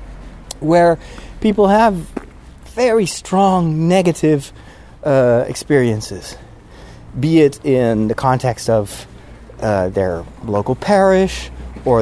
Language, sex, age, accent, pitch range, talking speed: English, male, 30-49, American, 110-175 Hz, 95 wpm